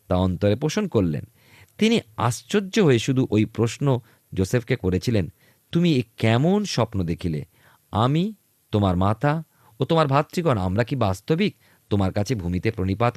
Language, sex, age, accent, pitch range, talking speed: Bengali, male, 40-59, native, 95-145 Hz, 135 wpm